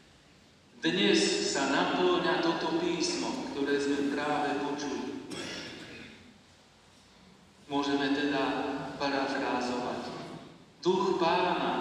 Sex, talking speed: male, 70 wpm